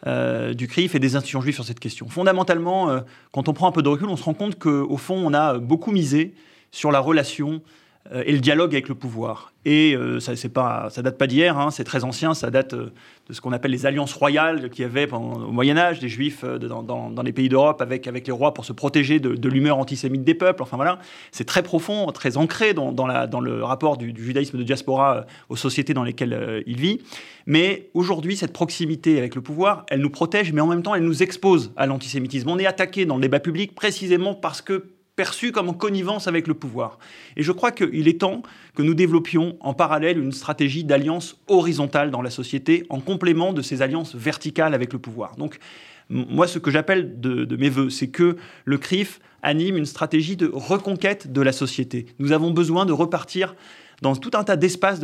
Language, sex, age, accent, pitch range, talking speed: French, male, 30-49, French, 135-180 Hz, 230 wpm